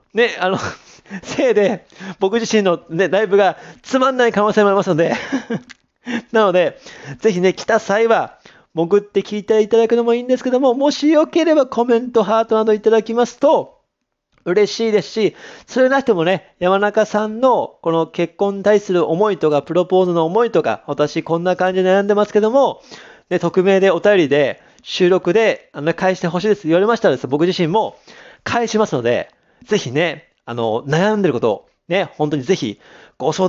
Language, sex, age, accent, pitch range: Japanese, male, 40-59, native, 165-220 Hz